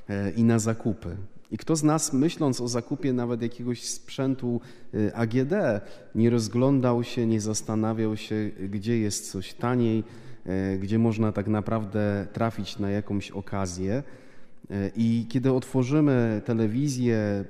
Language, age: Polish, 30-49